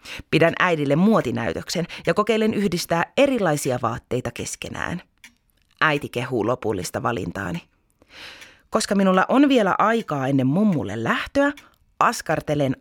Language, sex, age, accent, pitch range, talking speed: Finnish, female, 30-49, native, 140-185 Hz, 105 wpm